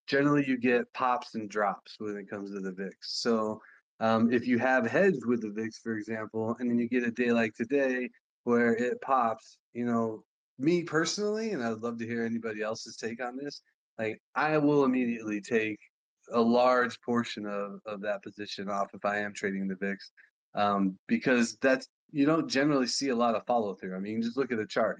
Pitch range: 110-130 Hz